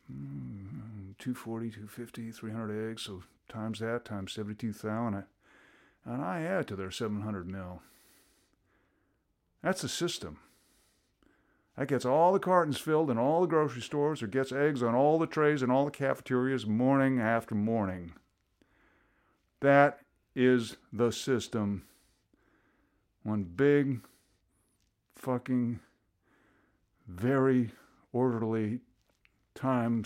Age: 50-69